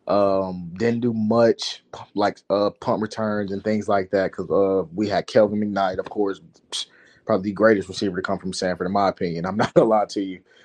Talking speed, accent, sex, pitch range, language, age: 210 wpm, American, male, 100-110 Hz, English, 20-39